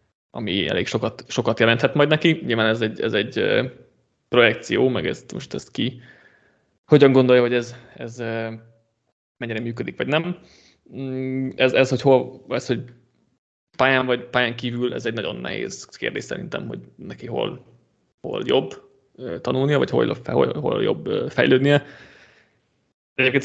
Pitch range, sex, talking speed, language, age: 115-130 Hz, male, 145 wpm, Hungarian, 20-39